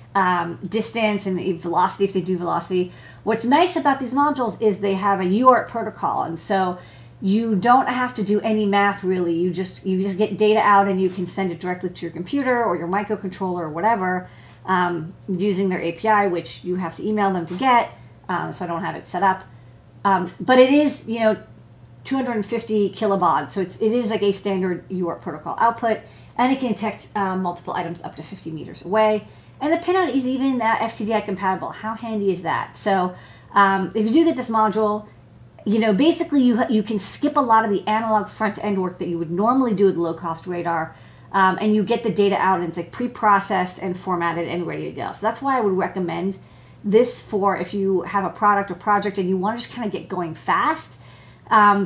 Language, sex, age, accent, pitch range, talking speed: English, female, 40-59, American, 180-220 Hz, 215 wpm